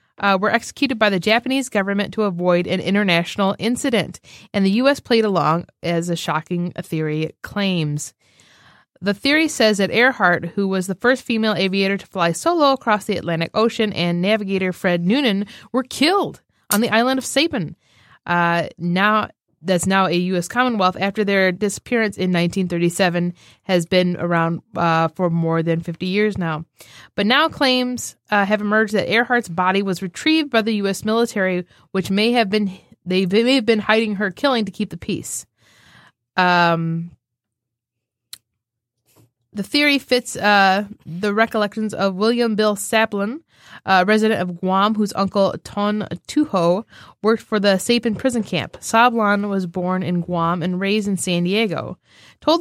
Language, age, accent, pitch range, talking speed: English, 20-39, American, 175-220 Hz, 160 wpm